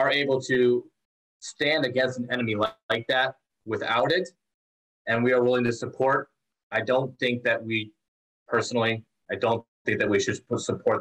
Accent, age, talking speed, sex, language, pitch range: American, 30-49, 165 wpm, male, English, 110-130 Hz